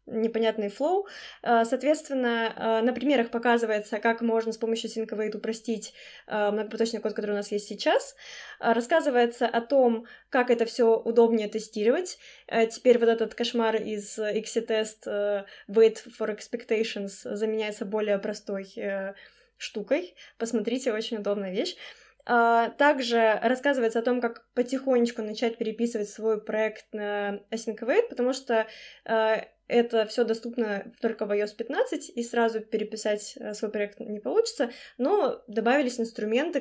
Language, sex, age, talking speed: Russian, female, 20-39, 125 wpm